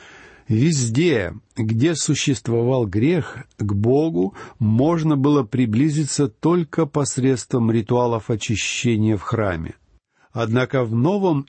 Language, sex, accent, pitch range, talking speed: Russian, male, native, 105-140 Hz, 95 wpm